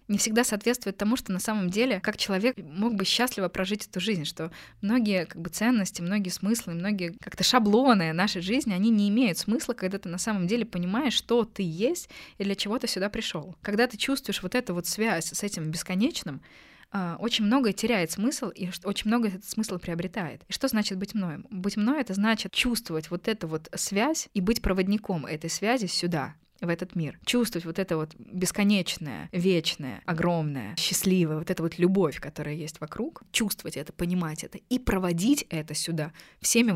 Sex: female